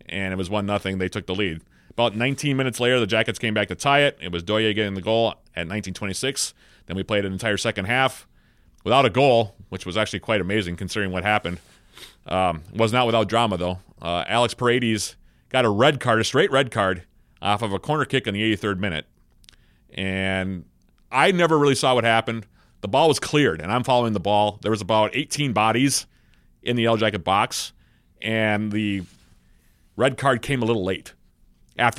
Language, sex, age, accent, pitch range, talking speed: English, male, 30-49, American, 90-115 Hz, 200 wpm